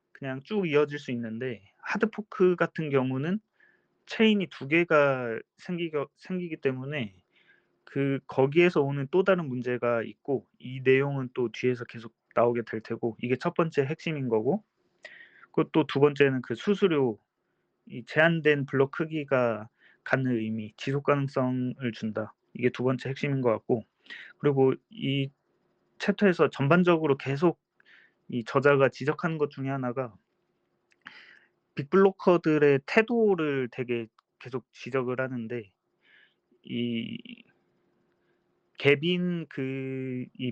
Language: Korean